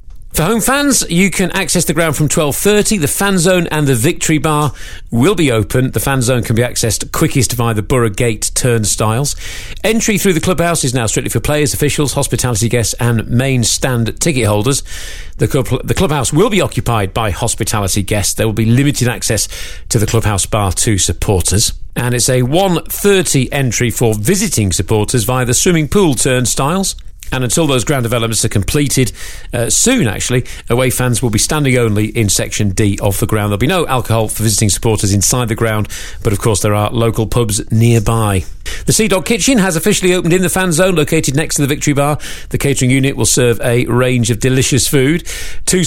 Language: English